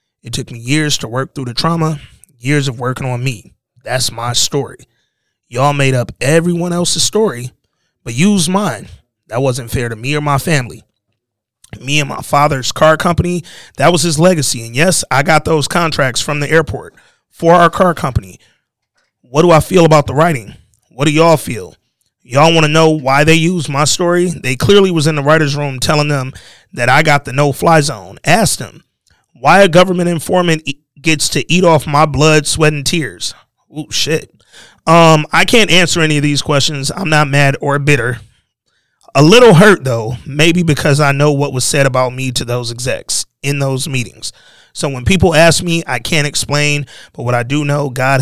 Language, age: English, 30-49